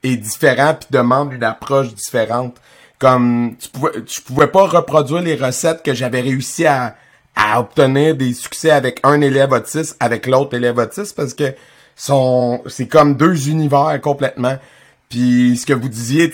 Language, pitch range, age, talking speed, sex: French, 130-145 Hz, 30-49, 165 wpm, male